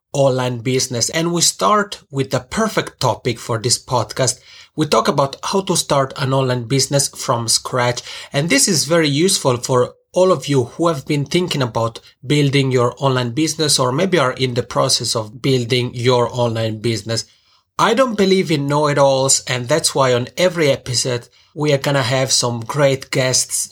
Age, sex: 30-49, male